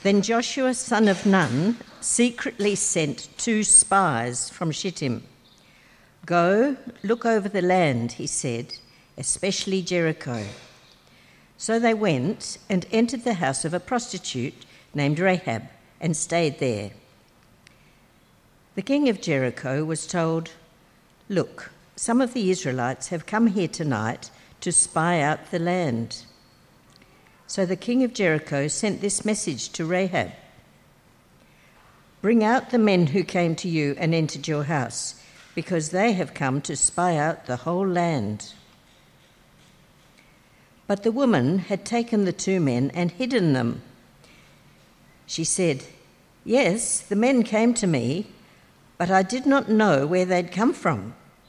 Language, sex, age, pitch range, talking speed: English, female, 60-79, 145-205 Hz, 135 wpm